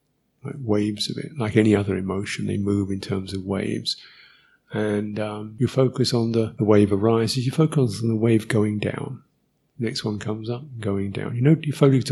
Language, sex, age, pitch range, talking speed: English, male, 50-69, 105-130 Hz, 205 wpm